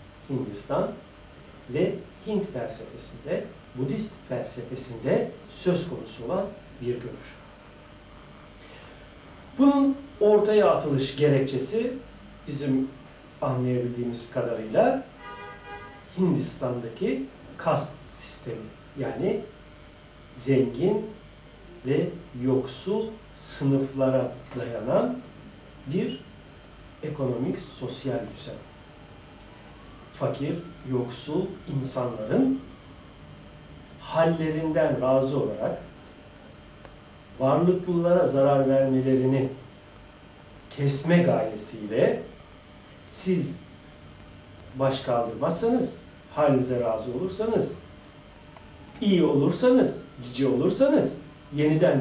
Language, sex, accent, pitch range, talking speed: Turkish, male, native, 125-160 Hz, 60 wpm